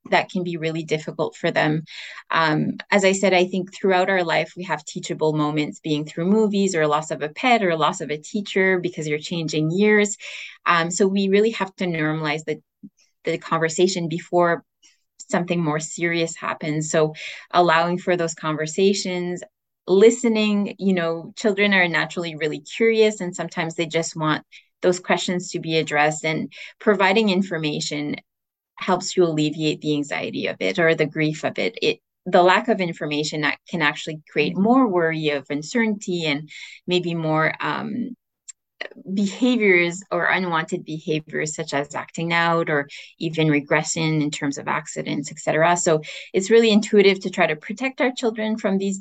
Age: 20-39